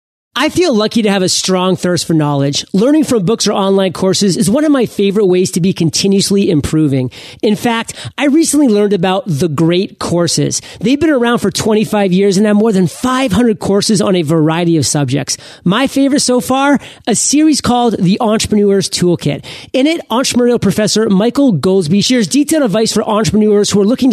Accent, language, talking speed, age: American, English, 190 wpm, 40-59